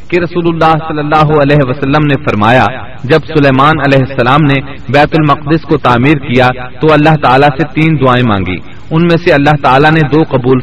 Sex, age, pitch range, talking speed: male, 40-59, 125-160 Hz, 190 wpm